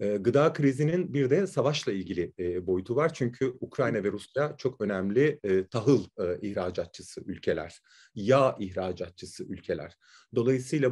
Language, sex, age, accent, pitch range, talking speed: Turkish, male, 40-59, native, 110-160 Hz, 130 wpm